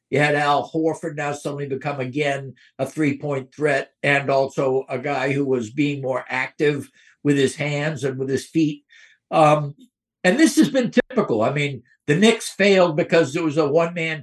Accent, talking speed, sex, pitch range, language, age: American, 180 wpm, male, 140-170 Hz, English, 60-79